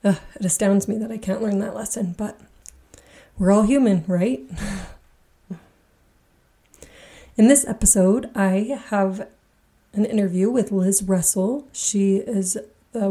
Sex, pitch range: female, 190-220 Hz